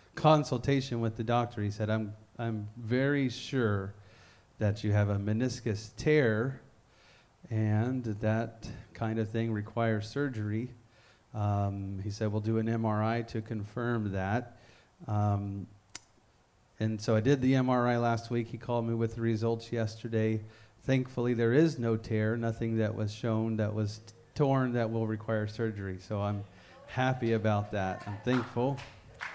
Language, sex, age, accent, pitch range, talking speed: English, male, 30-49, American, 105-120 Hz, 145 wpm